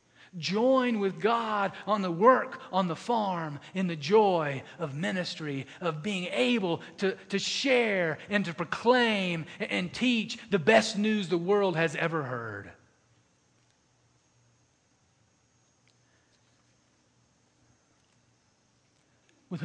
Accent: American